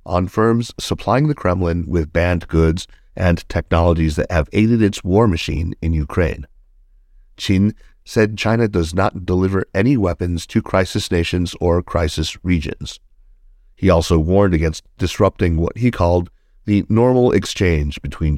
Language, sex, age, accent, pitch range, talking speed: English, male, 60-79, American, 80-100 Hz, 145 wpm